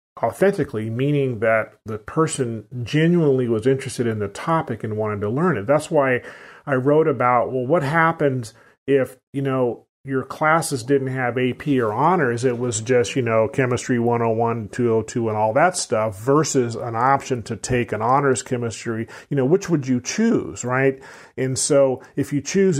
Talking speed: 175 wpm